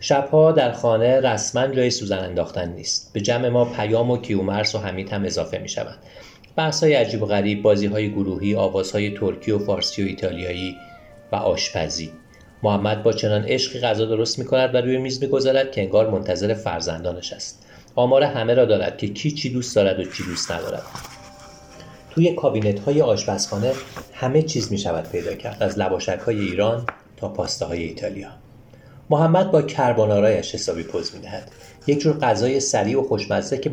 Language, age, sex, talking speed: Persian, 30-49, male, 160 wpm